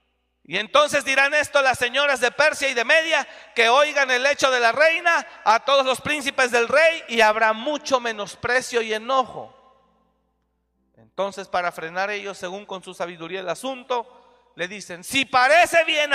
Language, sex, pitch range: Spanish, male, 235-295 Hz